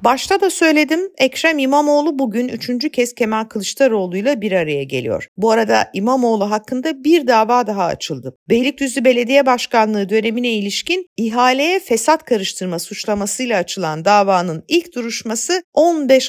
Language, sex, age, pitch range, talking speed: Turkish, female, 50-69, 210-280 Hz, 130 wpm